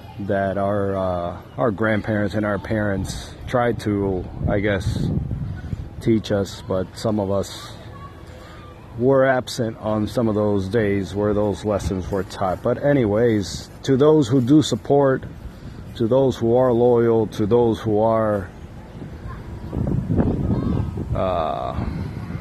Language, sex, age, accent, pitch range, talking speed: English, male, 30-49, American, 100-120 Hz, 125 wpm